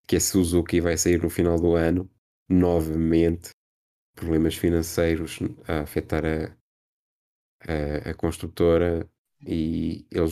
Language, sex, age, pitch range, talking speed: Portuguese, male, 20-39, 85-95 Hz, 115 wpm